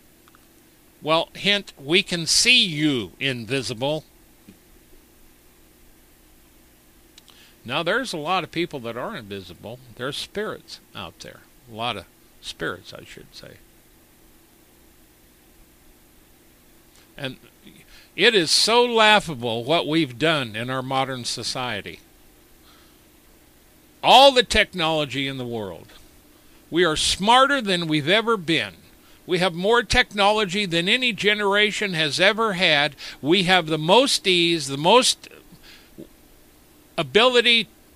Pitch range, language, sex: 125-200 Hz, English, male